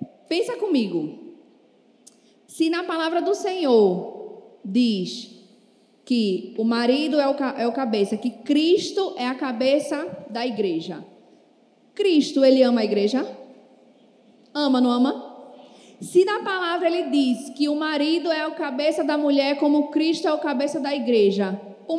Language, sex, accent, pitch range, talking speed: Portuguese, female, Brazilian, 245-320 Hz, 145 wpm